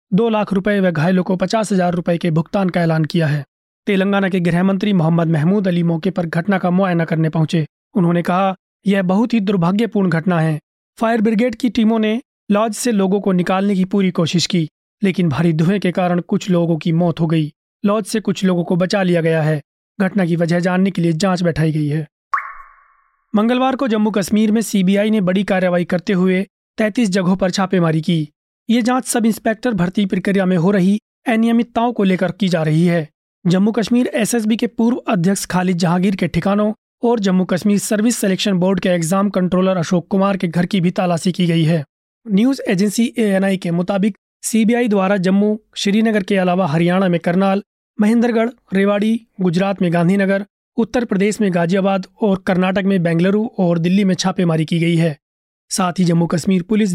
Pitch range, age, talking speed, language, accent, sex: 175-210 Hz, 30-49, 190 wpm, Hindi, native, male